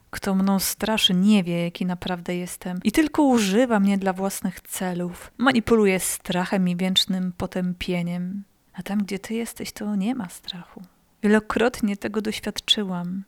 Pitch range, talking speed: 190-225 Hz, 145 wpm